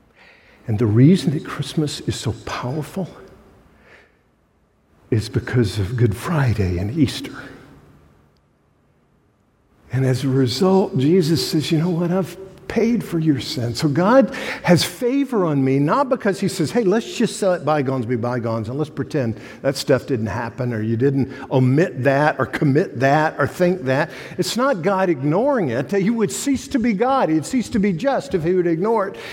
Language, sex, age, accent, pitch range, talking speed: English, male, 60-79, American, 130-185 Hz, 180 wpm